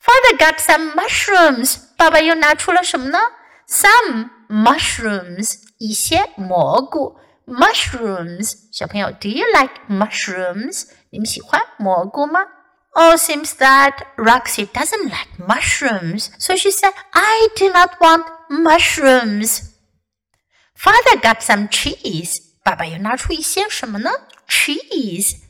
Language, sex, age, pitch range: Chinese, female, 50-69, 220-350 Hz